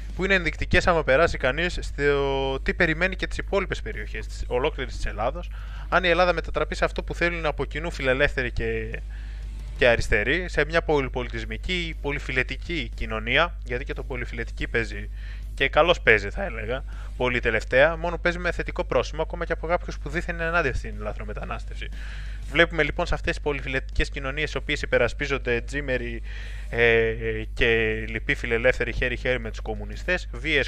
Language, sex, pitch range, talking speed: Greek, male, 115-165 Hz, 165 wpm